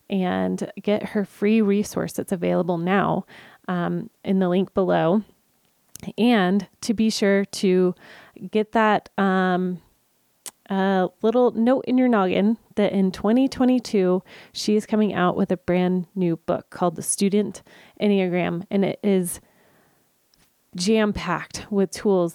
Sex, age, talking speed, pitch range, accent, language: female, 30-49, 135 wpm, 175-210 Hz, American, English